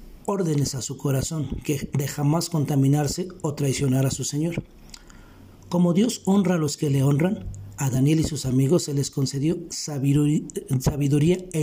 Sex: male